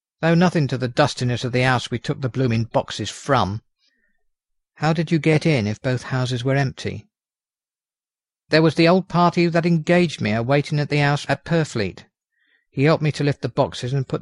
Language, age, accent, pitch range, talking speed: English, 50-69, British, 130-165 Hz, 205 wpm